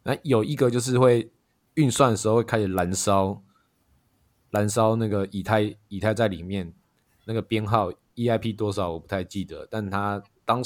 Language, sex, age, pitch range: Chinese, male, 20-39, 100-115 Hz